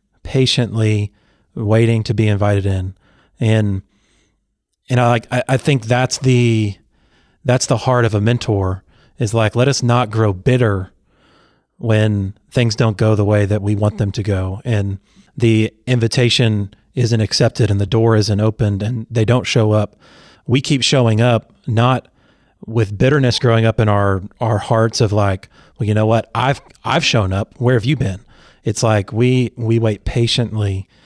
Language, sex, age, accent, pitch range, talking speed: English, male, 30-49, American, 105-125 Hz, 170 wpm